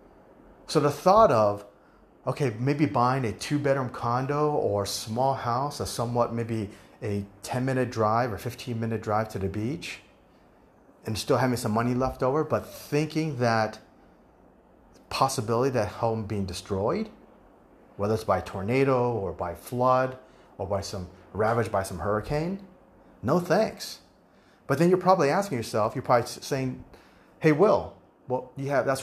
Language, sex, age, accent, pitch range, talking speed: English, male, 30-49, American, 105-135 Hz, 155 wpm